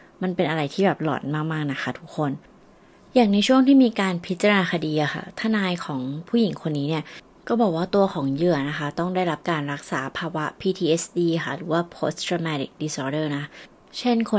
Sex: female